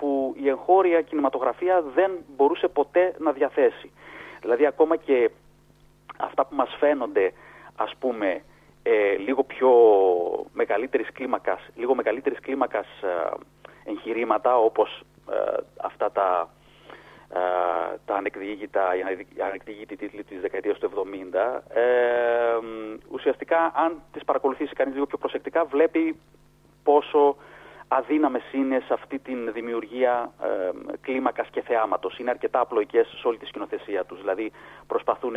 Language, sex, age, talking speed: Greek, male, 30-49, 120 wpm